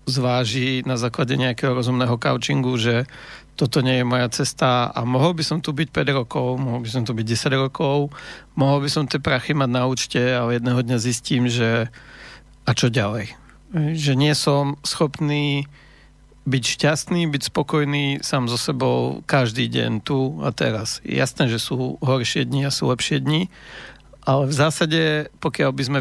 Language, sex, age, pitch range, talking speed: Slovak, male, 50-69, 125-150 Hz, 170 wpm